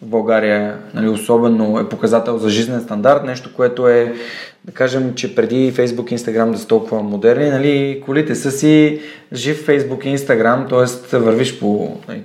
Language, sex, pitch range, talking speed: Bulgarian, male, 115-135 Hz, 170 wpm